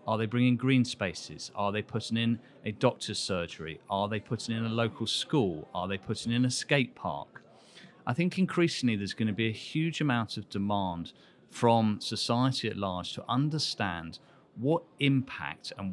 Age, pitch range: 40-59, 100-130 Hz